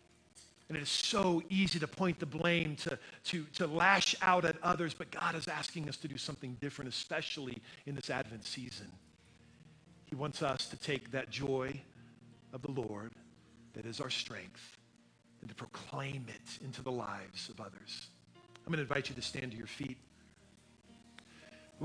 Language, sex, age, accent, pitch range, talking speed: English, male, 50-69, American, 140-195 Hz, 175 wpm